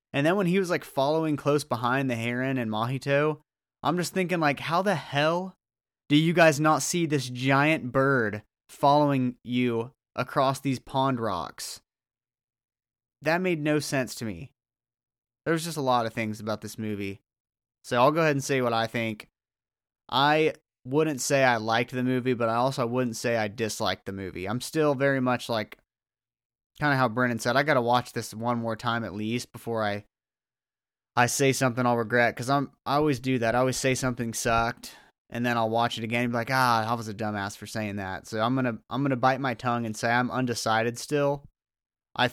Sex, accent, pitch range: male, American, 115-135 Hz